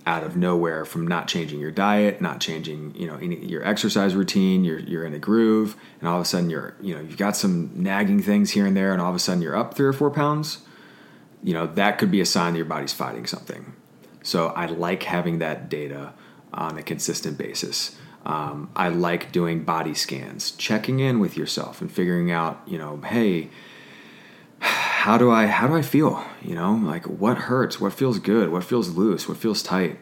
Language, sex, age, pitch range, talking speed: English, male, 30-49, 80-130 Hz, 210 wpm